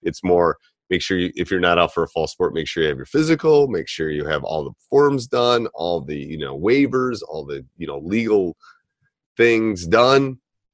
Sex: male